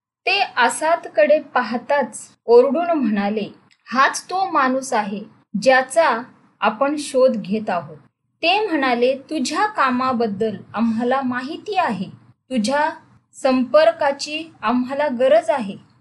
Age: 20-39